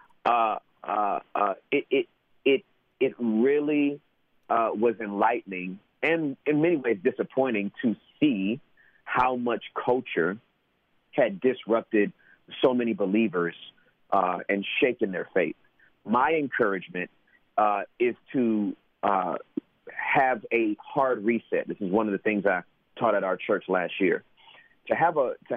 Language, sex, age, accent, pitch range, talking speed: English, male, 40-59, American, 105-140 Hz, 135 wpm